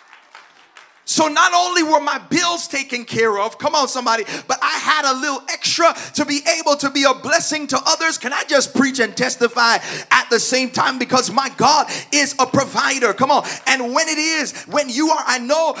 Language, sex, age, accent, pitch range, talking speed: English, male, 30-49, American, 260-300 Hz, 205 wpm